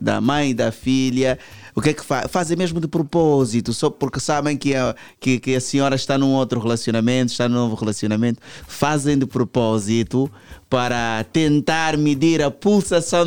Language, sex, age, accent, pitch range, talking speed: Portuguese, male, 20-39, Brazilian, 110-135 Hz, 175 wpm